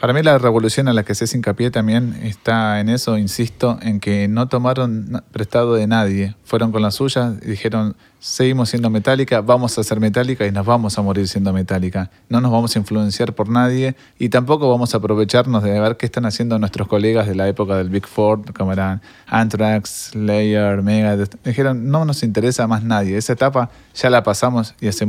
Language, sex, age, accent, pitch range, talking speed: Spanish, male, 20-39, Argentinian, 100-120 Hz, 205 wpm